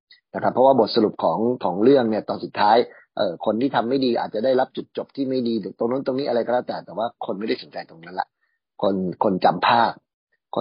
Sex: male